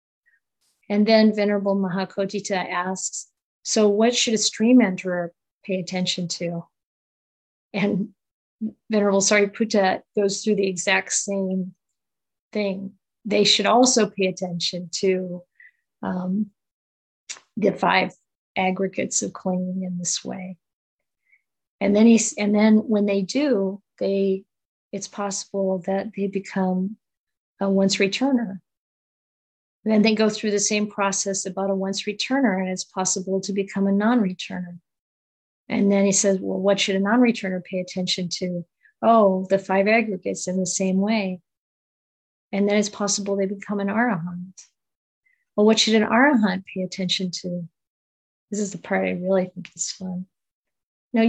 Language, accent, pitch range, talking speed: English, American, 185-210 Hz, 140 wpm